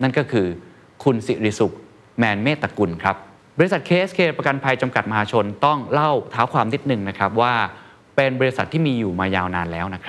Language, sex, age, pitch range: Thai, male, 20-39, 100-140 Hz